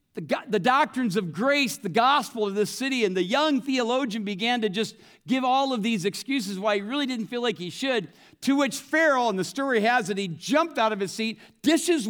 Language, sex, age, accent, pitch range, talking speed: English, male, 50-69, American, 200-275 Hz, 220 wpm